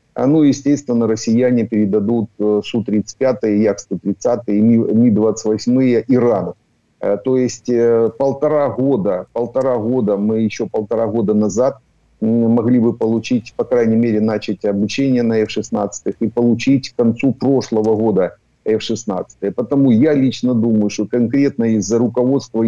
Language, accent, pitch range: Ukrainian, native, 105-125 Hz